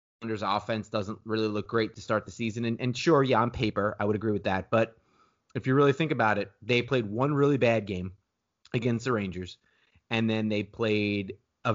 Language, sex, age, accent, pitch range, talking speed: English, male, 30-49, American, 95-125 Hz, 215 wpm